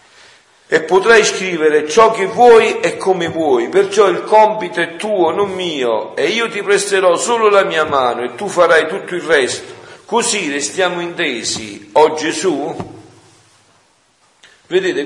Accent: native